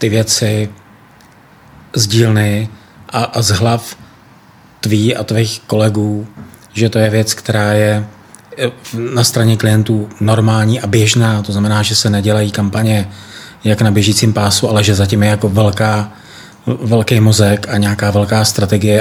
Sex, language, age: male, Czech, 30-49